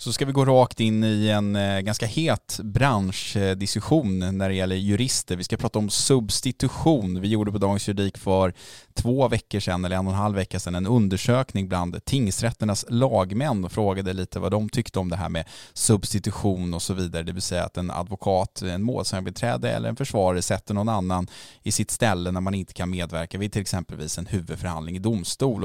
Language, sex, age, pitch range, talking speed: English, male, 20-39, 90-110 Hz, 195 wpm